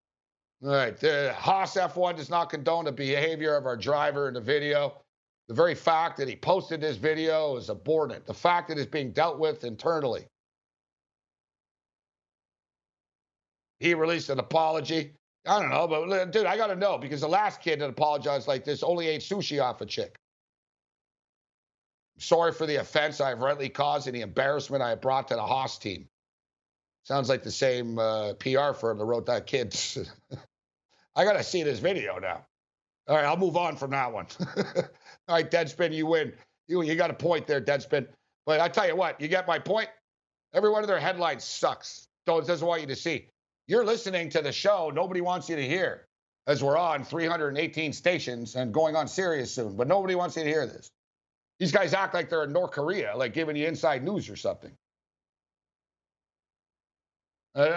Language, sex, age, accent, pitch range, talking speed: English, male, 60-79, American, 130-170 Hz, 190 wpm